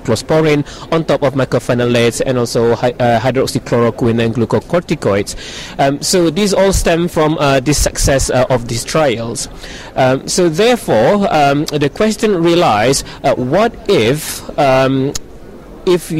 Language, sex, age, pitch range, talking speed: English, male, 30-49, 120-150 Hz, 120 wpm